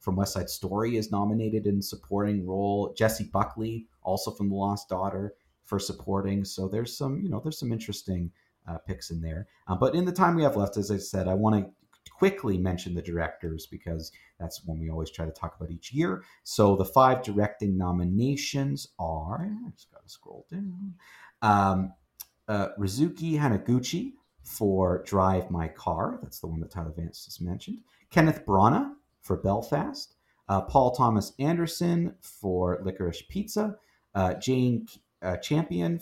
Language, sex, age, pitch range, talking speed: English, male, 40-59, 95-125 Hz, 170 wpm